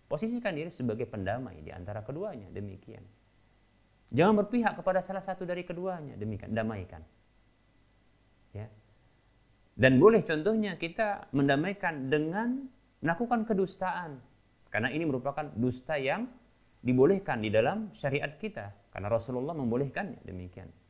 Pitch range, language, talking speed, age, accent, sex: 105-160 Hz, Indonesian, 115 wpm, 30-49, native, male